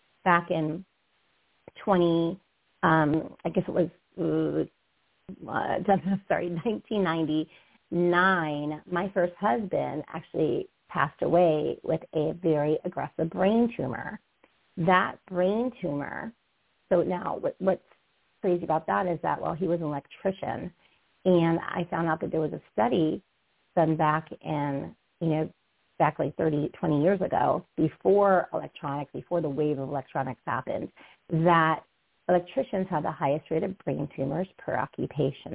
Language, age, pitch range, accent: English, 40-59, 155-185 Hz, American